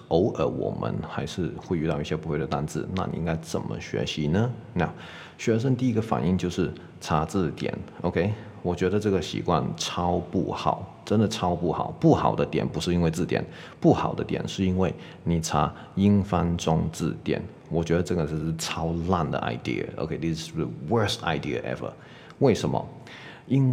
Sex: male